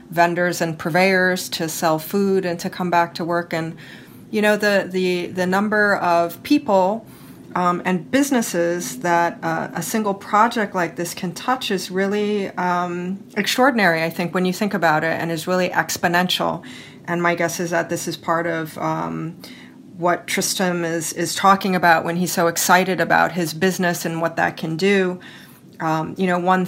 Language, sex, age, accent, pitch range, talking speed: English, female, 30-49, American, 170-195 Hz, 180 wpm